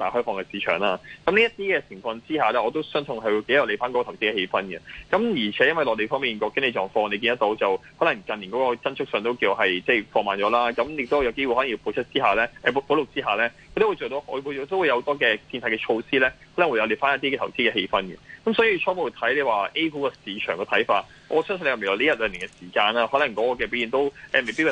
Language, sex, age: Chinese, male, 20-39